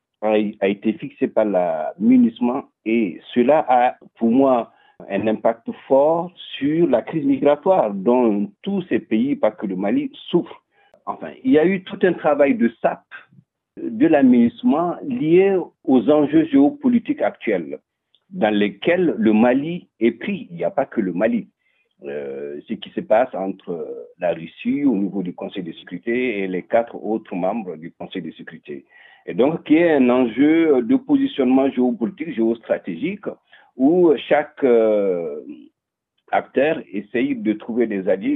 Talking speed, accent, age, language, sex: 155 wpm, French, 50-69, French, male